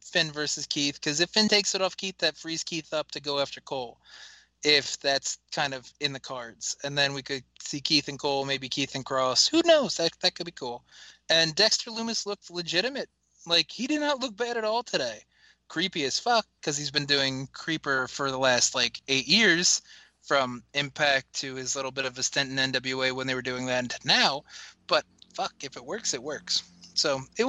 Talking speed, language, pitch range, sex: 215 wpm, English, 145-185 Hz, male